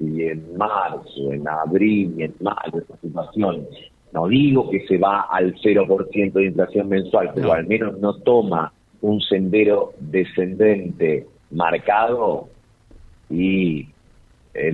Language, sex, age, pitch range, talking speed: Spanish, male, 40-59, 95-130 Hz, 130 wpm